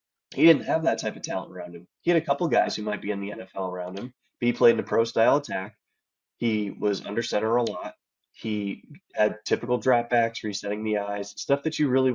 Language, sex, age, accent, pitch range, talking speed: English, male, 20-39, American, 100-130 Hz, 220 wpm